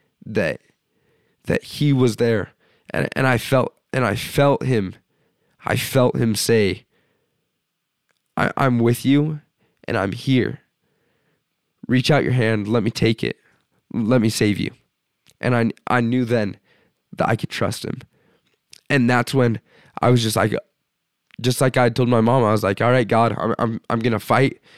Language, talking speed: English, 170 wpm